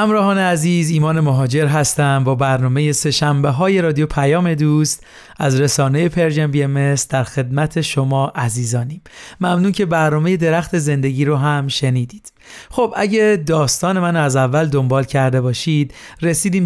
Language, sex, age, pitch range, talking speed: Persian, male, 30-49, 140-170 Hz, 135 wpm